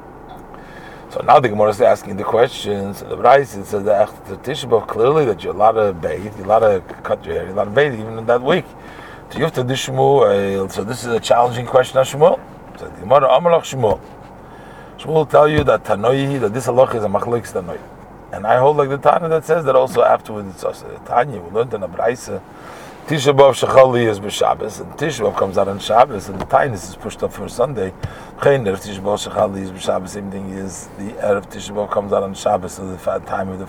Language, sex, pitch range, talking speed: English, male, 100-135 Hz, 205 wpm